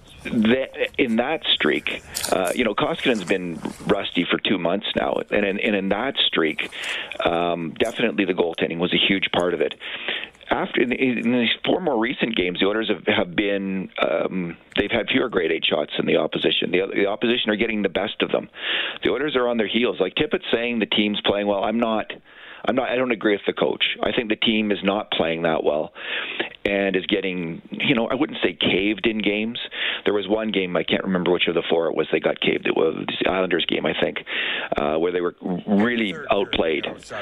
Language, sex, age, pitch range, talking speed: English, male, 40-59, 95-120 Hz, 215 wpm